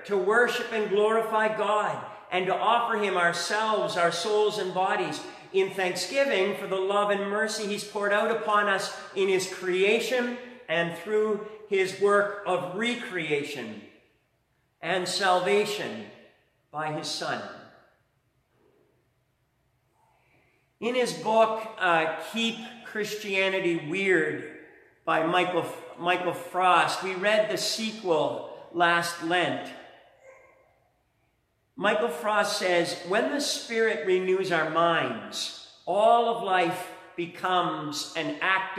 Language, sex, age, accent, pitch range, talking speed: English, male, 50-69, American, 180-220 Hz, 110 wpm